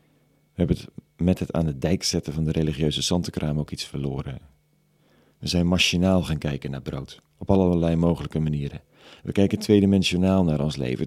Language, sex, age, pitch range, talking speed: Dutch, male, 40-59, 75-105 Hz, 175 wpm